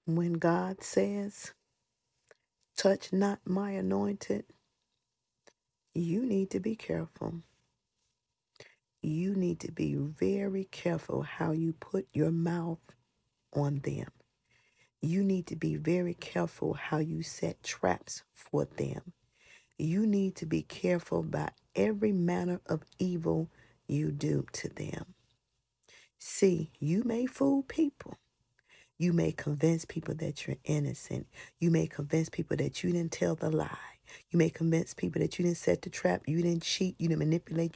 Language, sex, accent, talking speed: English, female, American, 140 wpm